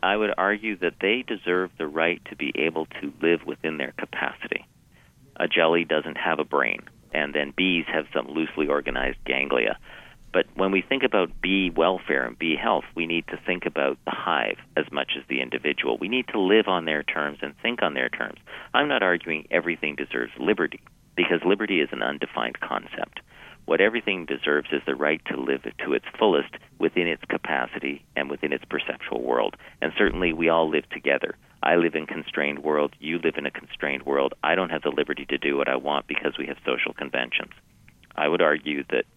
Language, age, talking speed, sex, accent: English, 50-69, 200 wpm, male, American